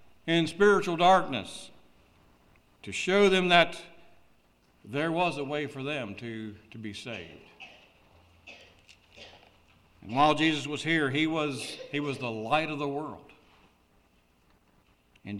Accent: American